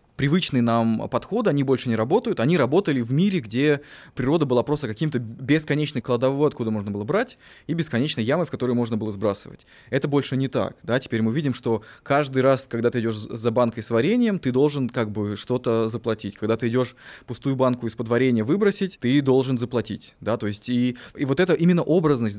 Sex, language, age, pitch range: male, Russian, 20-39, 115-150 Hz